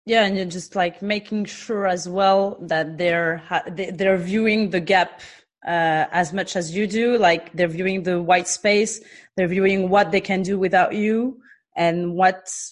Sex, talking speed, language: female, 180 wpm, French